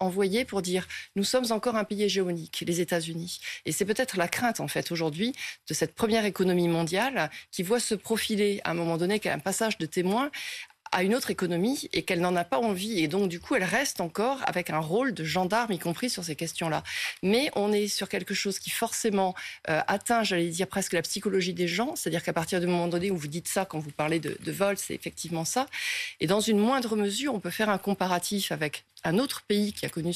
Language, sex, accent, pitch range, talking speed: French, female, French, 170-210 Hz, 235 wpm